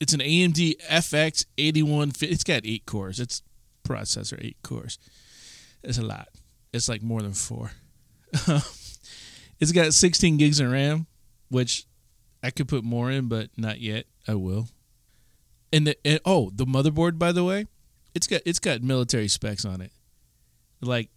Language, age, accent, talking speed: English, 20-39, American, 160 wpm